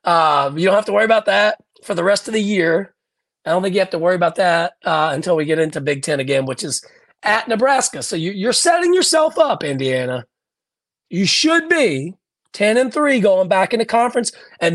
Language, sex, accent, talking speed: English, male, American, 215 wpm